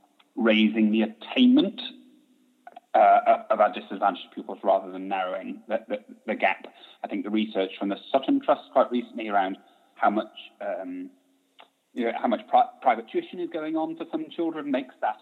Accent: British